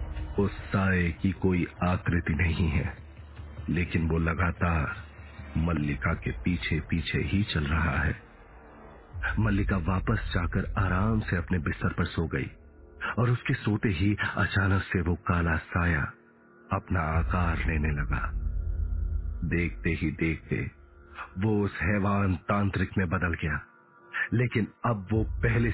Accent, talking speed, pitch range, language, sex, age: native, 130 wpm, 85-110 Hz, Hindi, male, 50-69